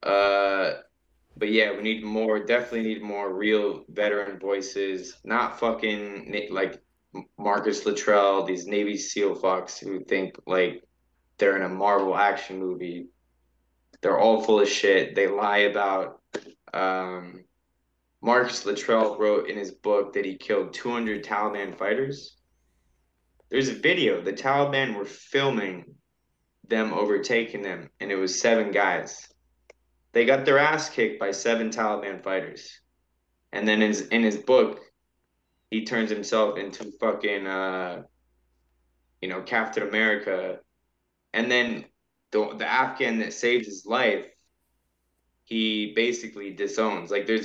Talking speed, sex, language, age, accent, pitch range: 135 wpm, male, English, 20-39, American, 85-110 Hz